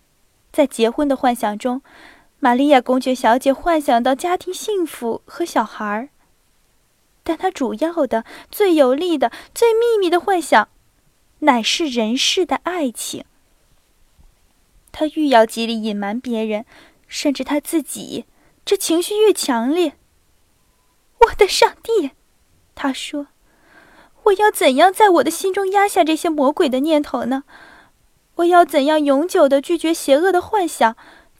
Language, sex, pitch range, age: Chinese, female, 240-335 Hz, 20-39